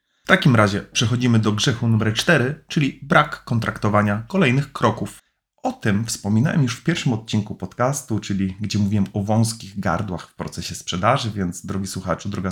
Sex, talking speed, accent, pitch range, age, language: male, 165 wpm, native, 100-115 Hz, 30-49, Polish